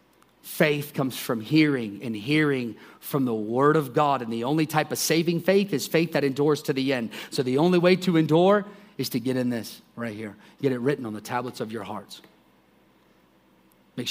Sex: male